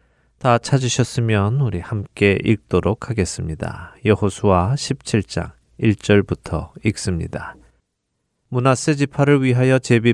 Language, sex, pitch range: Korean, male, 95-120 Hz